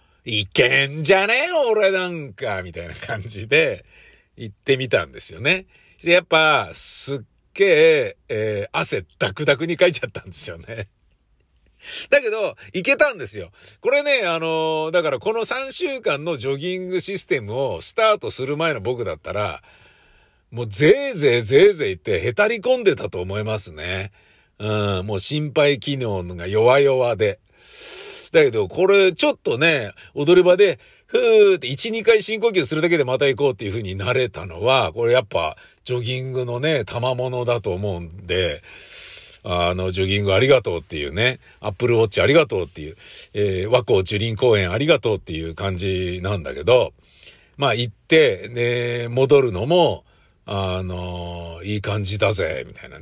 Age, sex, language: 50-69, male, Japanese